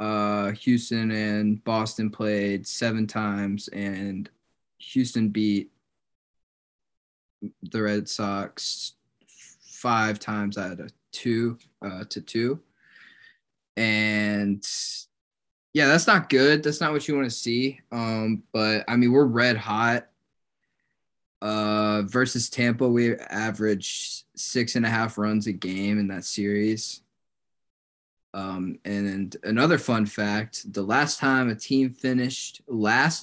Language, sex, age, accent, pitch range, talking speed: English, male, 20-39, American, 100-125 Hz, 120 wpm